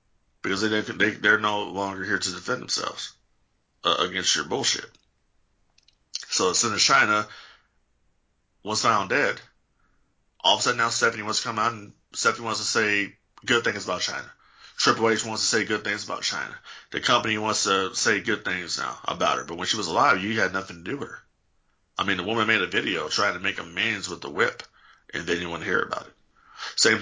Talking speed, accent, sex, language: 210 wpm, American, male, English